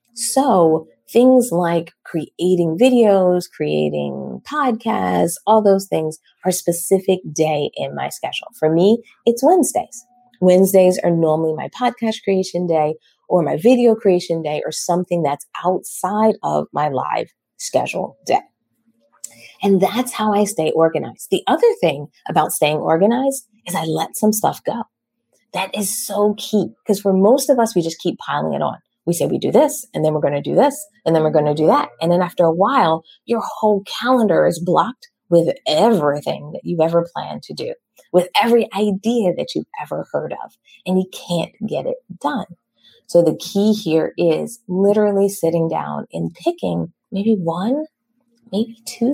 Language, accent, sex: English, American, female